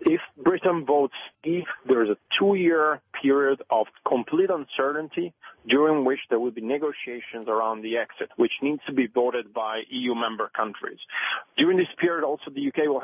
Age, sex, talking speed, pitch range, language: 40-59, male, 170 wpm, 125-155 Hz, English